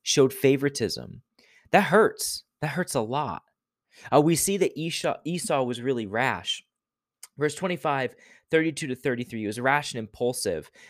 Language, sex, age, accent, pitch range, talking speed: English, male, 20-39, American, 120-155 Hz, 150 wpm